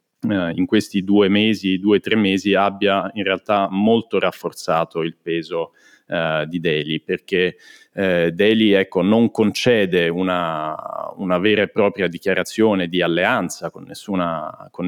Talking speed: 140 wpm